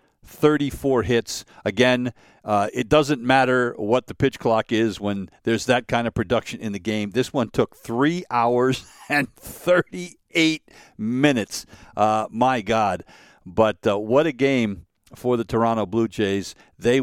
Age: 50-69